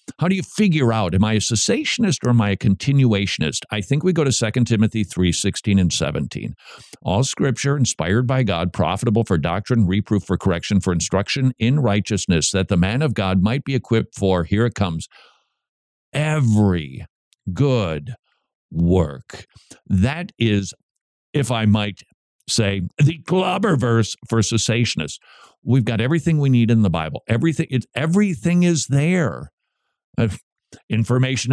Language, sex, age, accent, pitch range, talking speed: English, male, 50-69, American, 105-160 Hz, 155 wpm